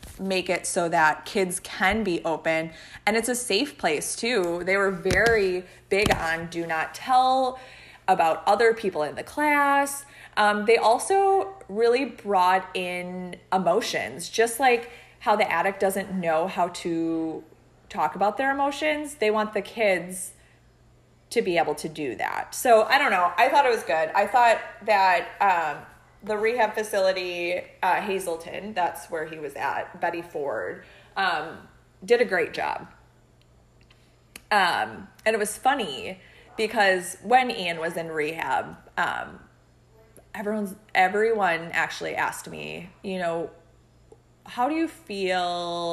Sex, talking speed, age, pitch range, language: female, 145 wpm, 20-39, 170-230 Hz, English